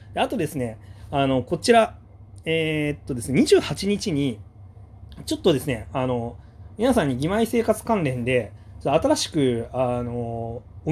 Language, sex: Japanese, male